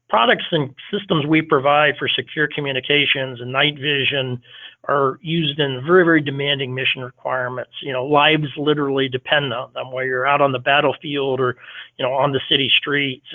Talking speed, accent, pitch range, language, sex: 175 wpm, American, 130-150 Hz, English, male